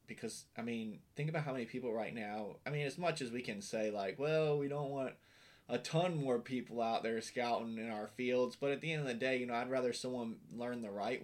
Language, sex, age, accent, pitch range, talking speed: English, male, 20-39, American, 110-135 Hz, 255 wpm